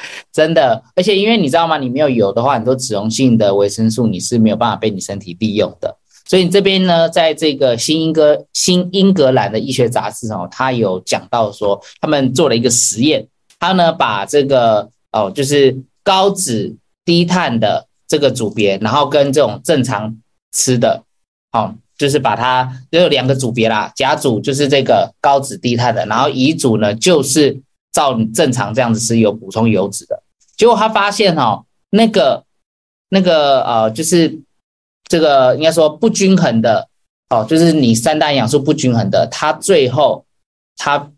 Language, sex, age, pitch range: Chinese, male, 20-39, 115-160 Hz